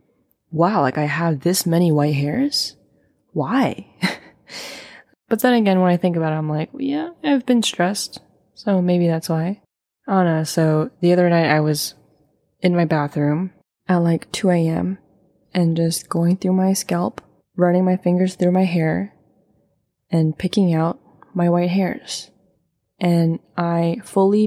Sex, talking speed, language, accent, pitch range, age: female, 160 wpm, English, American, 165-185 Hz, 20-39